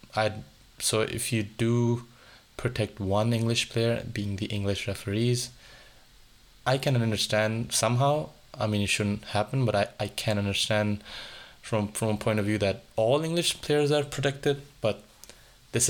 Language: English